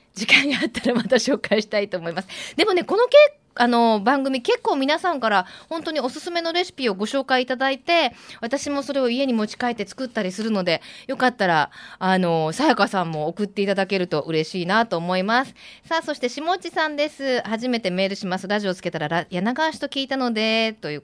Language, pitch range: Japanese, 185-280 Hz